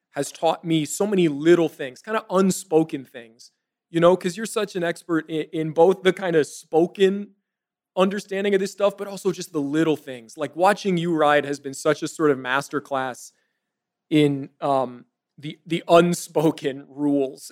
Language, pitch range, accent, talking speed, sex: English, 140-175 Hz, American, 180 wpm, male